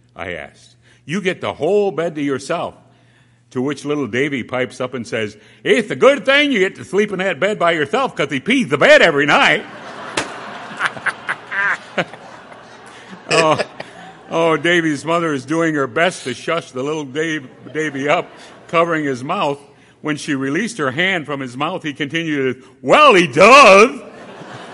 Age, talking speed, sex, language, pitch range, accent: 60-79, 165 wpm, male, English, 115-150 Hz, American